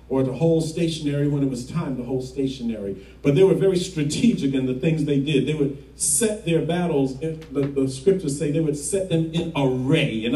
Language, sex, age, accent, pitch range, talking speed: English, male, 40-59, American, 135-165 Hz, 215 wpm